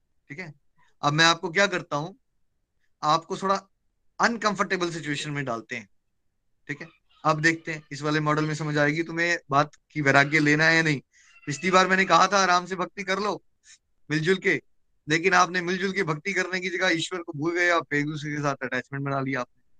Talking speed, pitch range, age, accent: 200 wpm, 145-180 Hz, 20-39, native